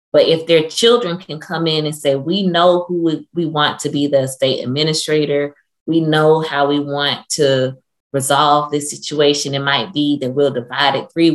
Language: English